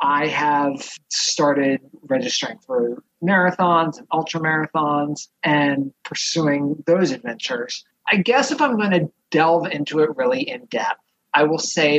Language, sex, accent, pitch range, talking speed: English, male, American, 140-175 Hz, 140 wpm